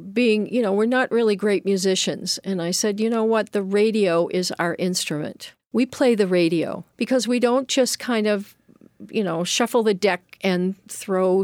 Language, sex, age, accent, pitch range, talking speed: English, female, 50-69, American, 180-225 Hz, 190 wpm